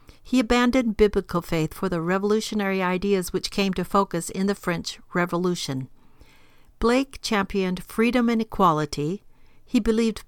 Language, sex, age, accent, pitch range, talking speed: English, female, 50-69, American, 170-215 Hz, 135 wpm